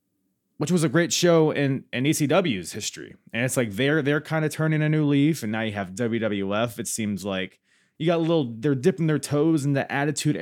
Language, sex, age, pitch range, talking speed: English, male, 20-39, 100-150 Hz, 225 wpm